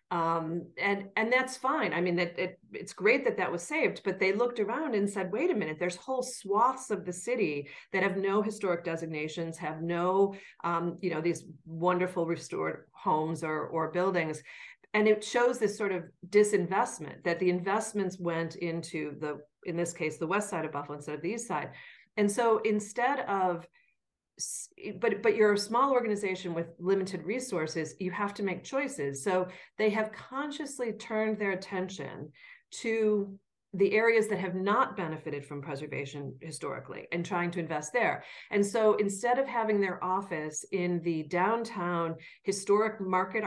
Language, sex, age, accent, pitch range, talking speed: English, female, 40-59, American, 170-210 Hz, 175 wpm